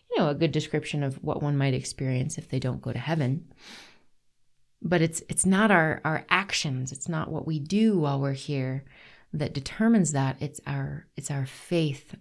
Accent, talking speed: American, 190 wpm